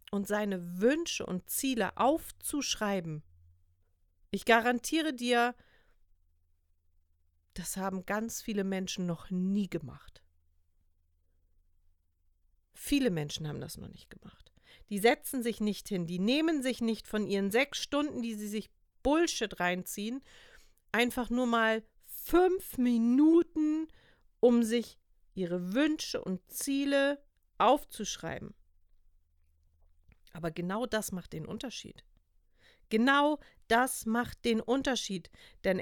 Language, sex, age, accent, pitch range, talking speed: German, female, 50-69, German, 165-255 Hz, 110 wpm